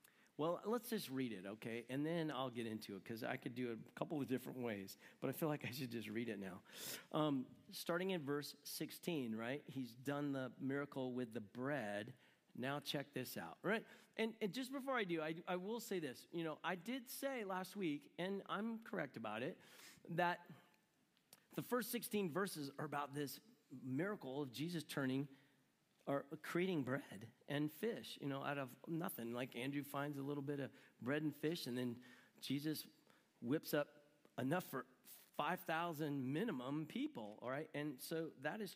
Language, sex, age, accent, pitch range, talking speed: English, male, 40-59, American, 135-195 Hz, 185 wpm